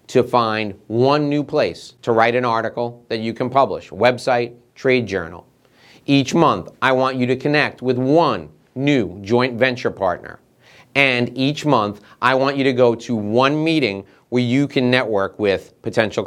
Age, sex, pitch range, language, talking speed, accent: 30-49, male, 125-160 Hz, English, 170 wpm, American